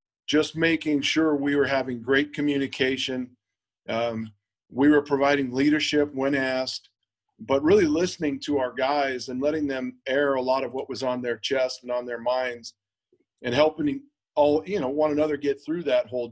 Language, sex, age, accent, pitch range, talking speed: English, male, 40-59, American, 125-145 Hz, 175 wpm